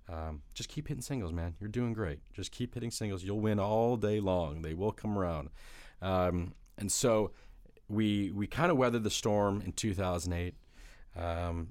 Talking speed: 180 wpm